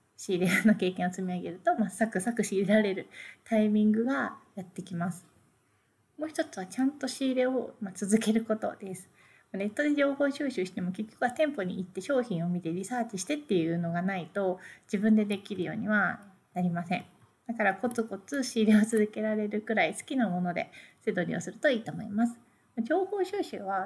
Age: 30-49